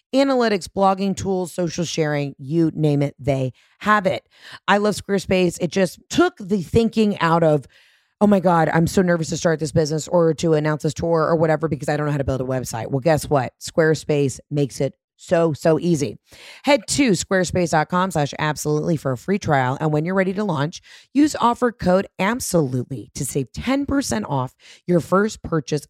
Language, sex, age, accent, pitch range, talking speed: English, female, 30-49, American, 150-195 Hz, 190 wpm